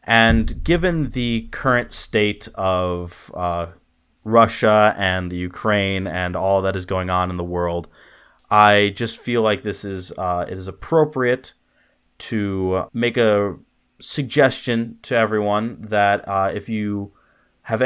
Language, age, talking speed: English, 30-49, 140 wpm